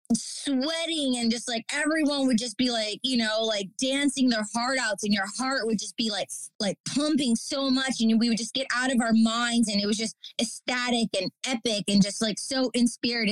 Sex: female